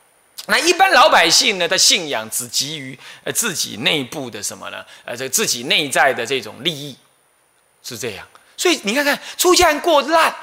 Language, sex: Chinese, male